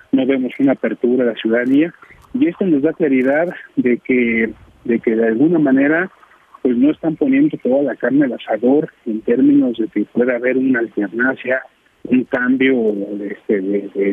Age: 40-59